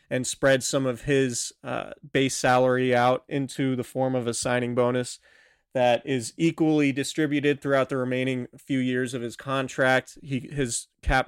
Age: 30-49